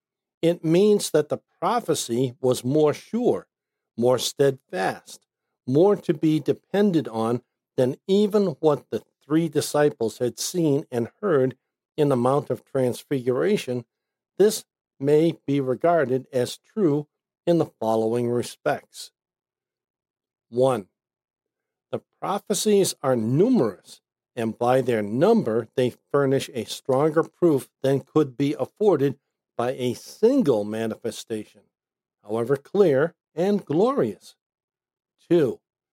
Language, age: English, 60-79